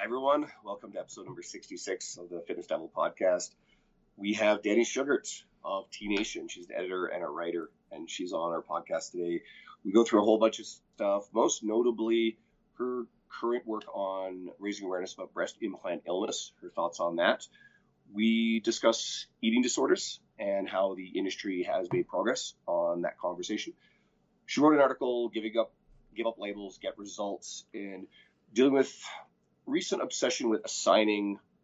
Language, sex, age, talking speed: English, male, 30-49, 165 wpm